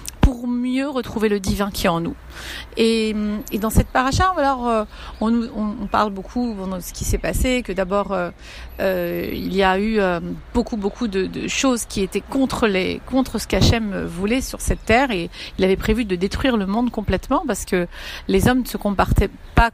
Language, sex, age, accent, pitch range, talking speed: French, female, 40-59, French, 190-230 Hz, 195 wpm